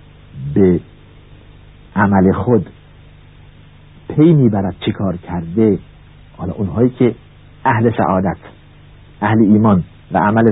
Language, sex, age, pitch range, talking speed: Persian, male, 50-69, 95-145 Hz, 95 wpm